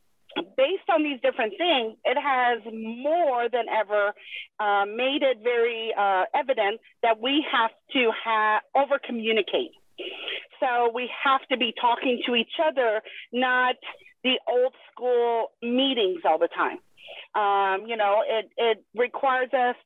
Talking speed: 140 wpm